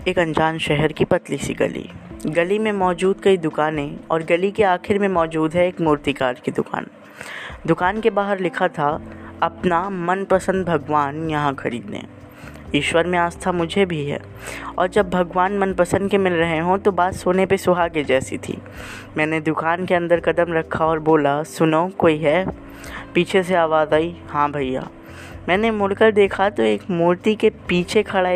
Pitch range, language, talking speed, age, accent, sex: 150-185 Hz, Hindi, 170 wpm, 20-39, native, female